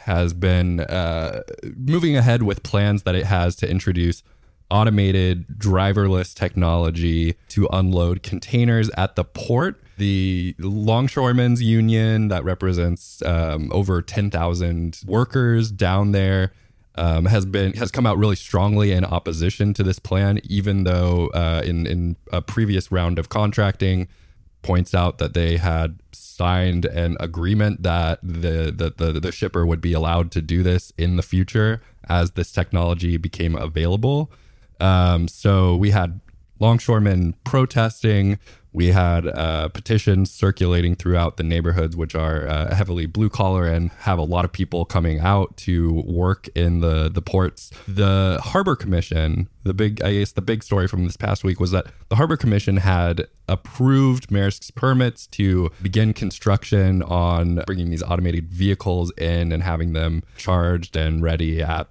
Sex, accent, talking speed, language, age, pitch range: male, American, 150 wpm, English, 20-39, 85-105 Hz